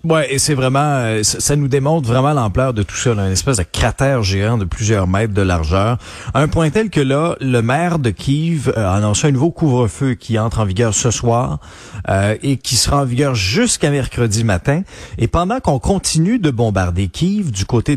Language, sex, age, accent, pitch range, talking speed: French, male, 30-49, Canadian, 105-145 Hz, 210 wpm